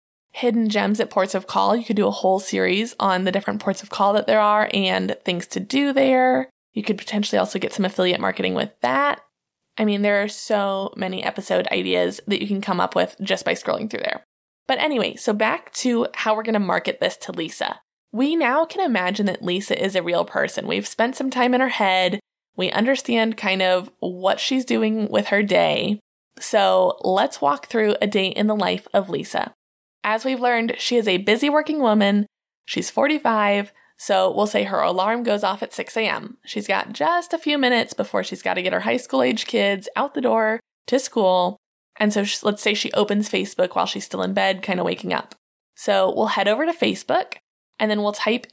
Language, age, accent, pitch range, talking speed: English, 20-39, American, 195-235 Hz, 215 wpm